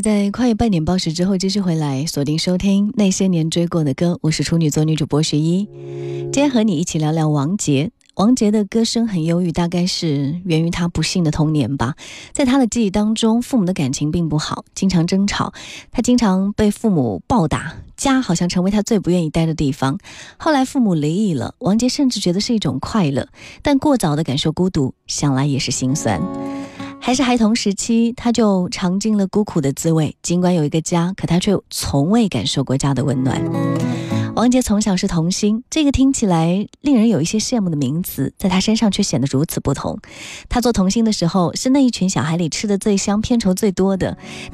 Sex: female